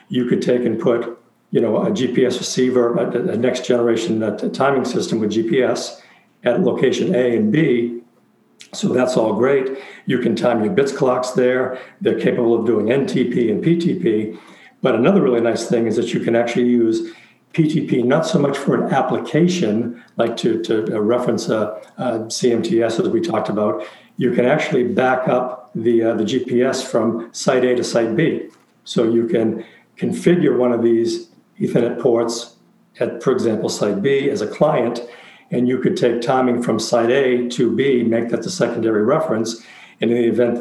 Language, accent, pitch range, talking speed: English, American, 115-130 Hz, 180 wpm